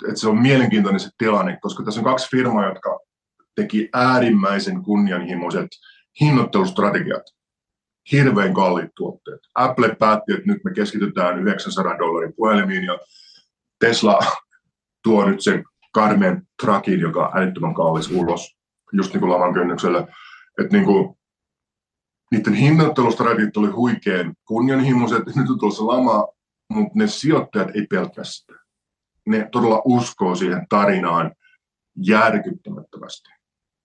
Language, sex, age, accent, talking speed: Finnish, male, 50-69, native, 120 wpm